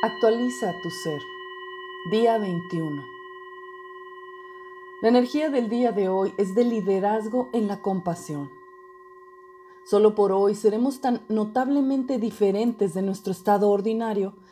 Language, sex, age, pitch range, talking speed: Spanish, female, 40-59, 200-265 Hz, 115 wpm